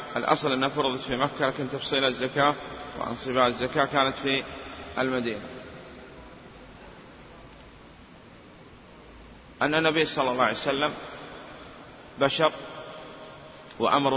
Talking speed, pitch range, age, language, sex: 90 wpm, 130-150 Hz, 30-49, Arabic, male